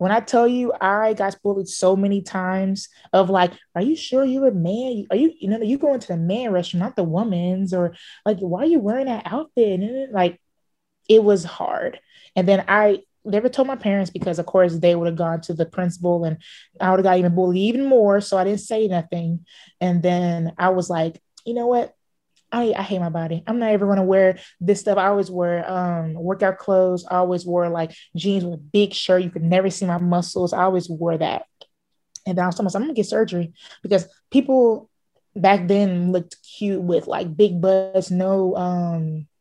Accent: American